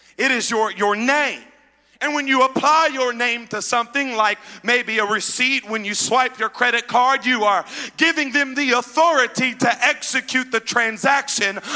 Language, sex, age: English, male, 40-59